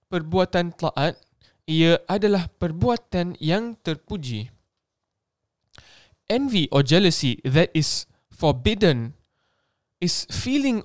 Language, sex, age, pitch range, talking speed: Malay, male, 10-29, 150-210 Hz, 85 wpm